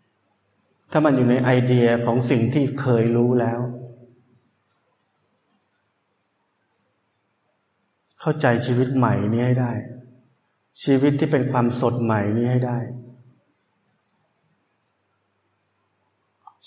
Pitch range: 120-135 Hz